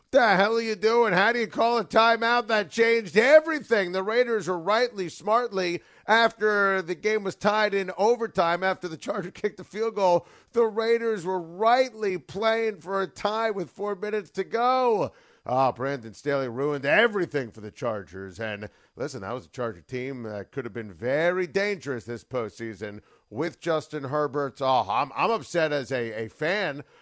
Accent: American